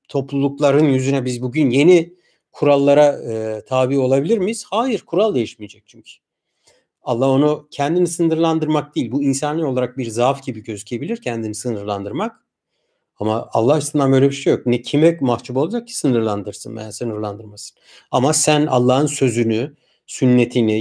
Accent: native